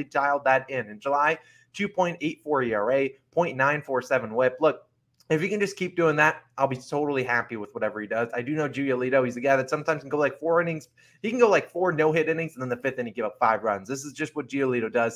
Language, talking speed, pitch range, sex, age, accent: English, 245 wpm, 125-155 Hz, male, 20-39, American